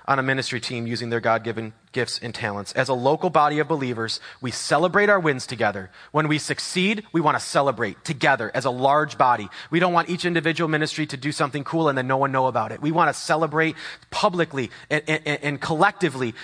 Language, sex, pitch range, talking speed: English, male, 115-155 Hz, 210 wpm